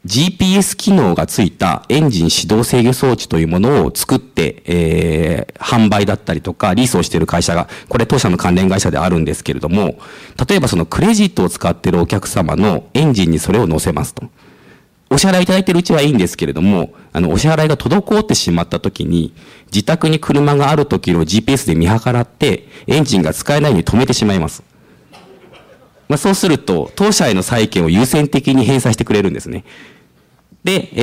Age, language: 40-59, Japanese